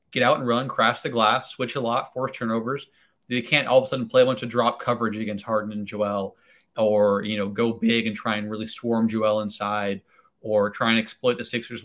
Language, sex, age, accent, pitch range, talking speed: English, male, 20-39, American, 110-125 Hz, 235 wpm